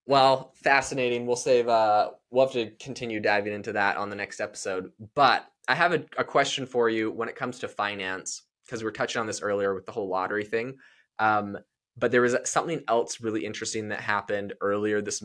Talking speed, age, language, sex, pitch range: 205 wpm, 20-39, English, male, 105-130 Hz